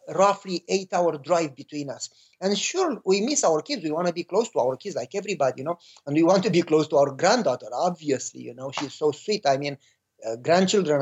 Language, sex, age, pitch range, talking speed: English, male, 50-69, 150-215 Hz, 235 wpm